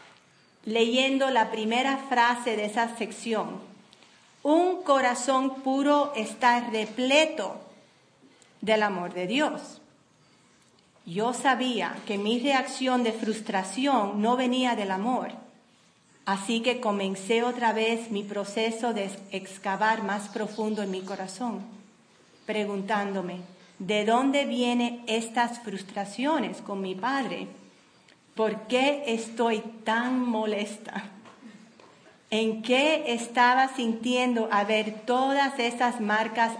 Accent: American